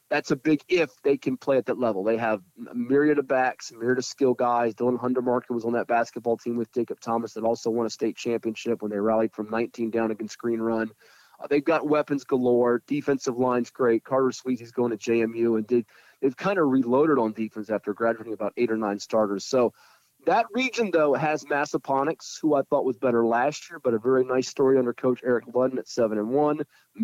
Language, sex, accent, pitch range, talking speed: English, male, American, 120-145 Hz, 215 wpm